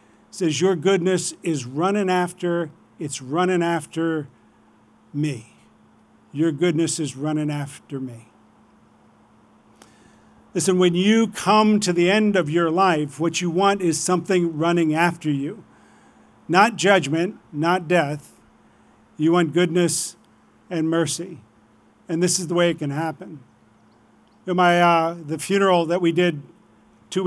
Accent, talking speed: American, 130 wpm